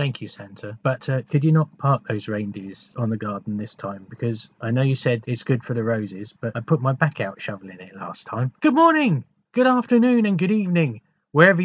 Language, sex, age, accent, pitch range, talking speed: English, male, 40-59, British, 125-170 Hz, 230 wpm